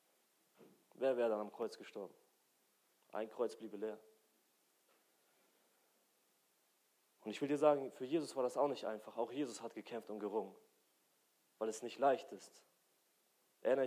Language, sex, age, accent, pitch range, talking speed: German, male, 30-49, German, 110-135 Hz, 145 wpm